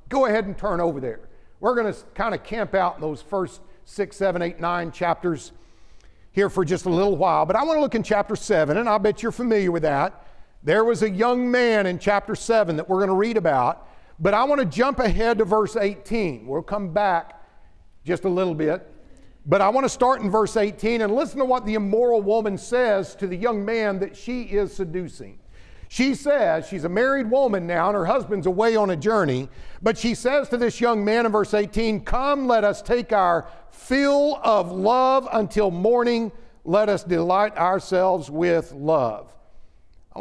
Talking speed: 205 wpm